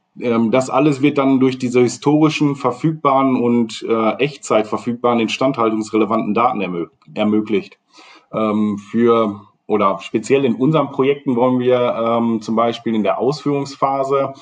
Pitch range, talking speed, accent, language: 115-140 Hz, 130 wpm, German, German